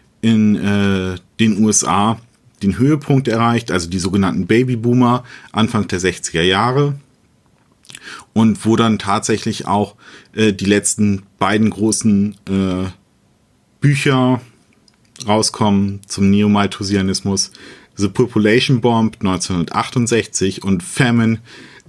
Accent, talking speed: German, 95 wpm